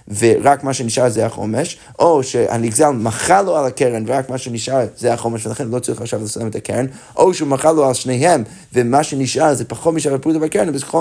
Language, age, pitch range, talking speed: Hebrew, 30-49, 115-155 Hz, 200 wpm